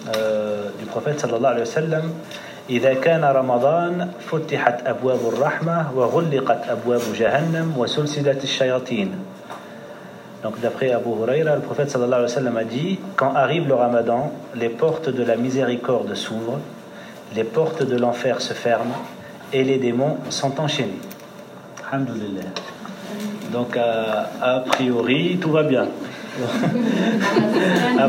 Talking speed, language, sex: 105 wpm, French, male